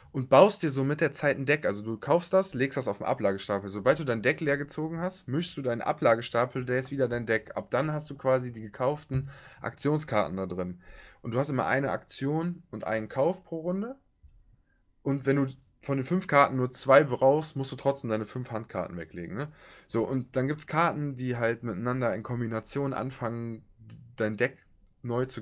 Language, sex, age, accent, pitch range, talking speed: German, male, 20-39, German, 110-140 Hz, 210 wpm